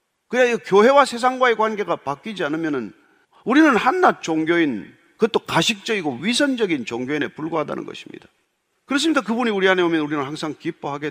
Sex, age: male, 40-59